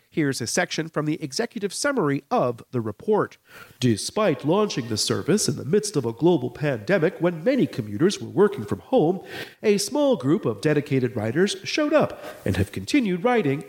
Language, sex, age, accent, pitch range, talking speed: English, male, 40-59, American, 140-215 Hz, 175 wpm